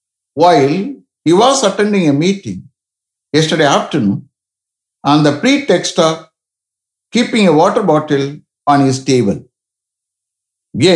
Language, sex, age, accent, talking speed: English, male, 60-79, Indian, 105 wpm